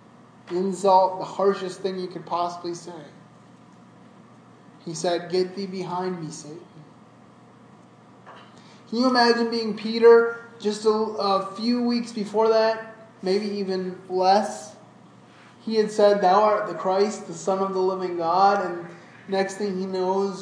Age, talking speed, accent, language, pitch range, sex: 20-39, 140 wpm, American, English, 170-195 Hz, male